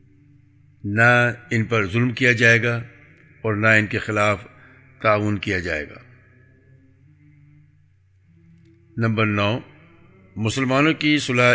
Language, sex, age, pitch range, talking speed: English, male, 60-79, 100-125 Hz, 110 wpm